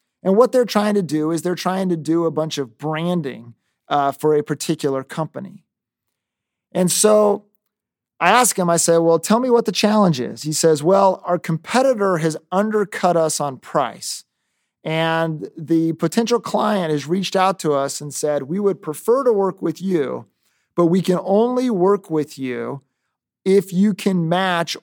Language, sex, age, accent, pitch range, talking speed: English, male, 30-49, American, 155-195 Hz, 175 wpm